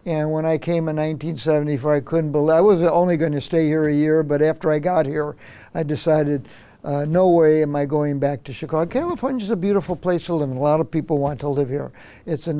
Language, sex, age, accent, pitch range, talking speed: English, male, 60-79, American, 150-180 Hz, 245 wpm